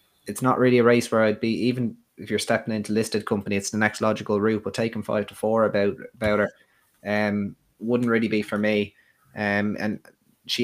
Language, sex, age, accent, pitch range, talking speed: English, male, 20-39, Irish, 100-110 Hz, 210 wpm